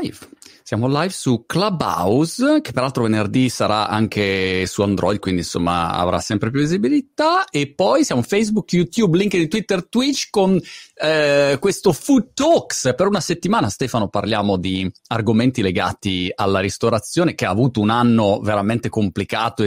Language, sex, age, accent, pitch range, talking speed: Italian, male, 30-49, native, 105-175 Hz, 145 wpm